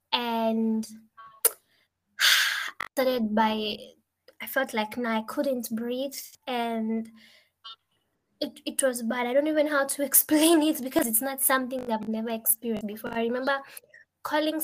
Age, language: 20-39, English